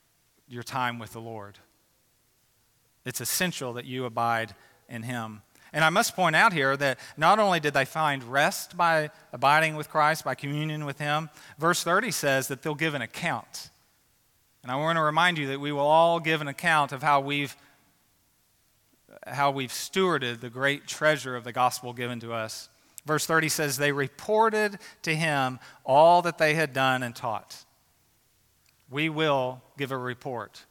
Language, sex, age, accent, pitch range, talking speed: English, male, 40-59, American, 125-155 Hz, 170 wpm